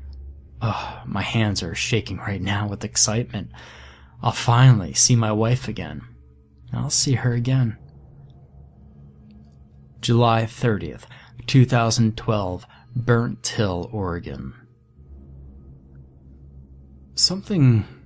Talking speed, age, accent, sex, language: 85 wpm, 20-39, American, male, English